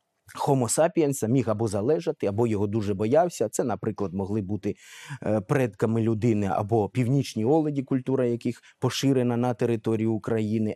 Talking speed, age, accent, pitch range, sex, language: 130 wpm, 20-39, native, 110-145 Hz, male, Ukrainian